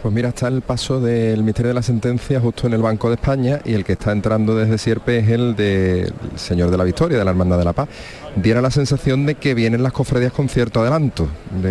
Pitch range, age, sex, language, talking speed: 100-115 Hz, 30-49, male, Spanish, 250 wpm